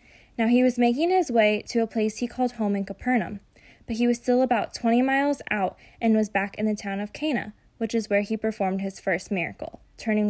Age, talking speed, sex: 10-29, 225 wpm, female